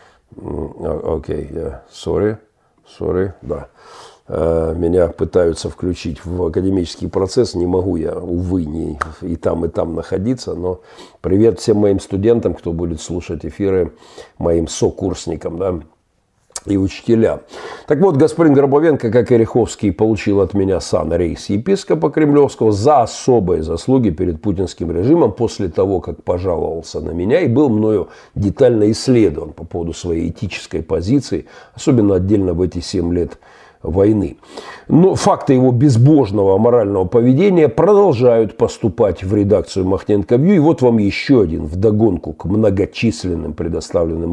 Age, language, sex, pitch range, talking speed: 50-69, Russian, male, 90-125 Hz, 130 wpm